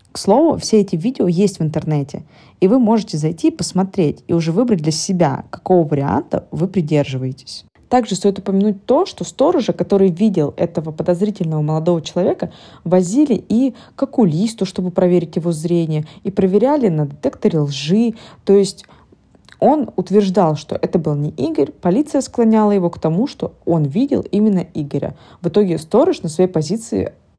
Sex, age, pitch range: female, 20-39, 160-215 Hz